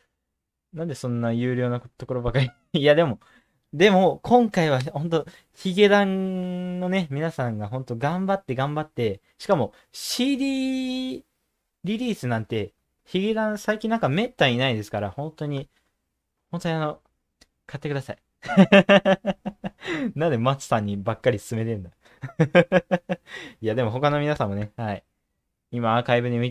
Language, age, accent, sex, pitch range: Japanese, 20-39, native, male, 115-180 Hz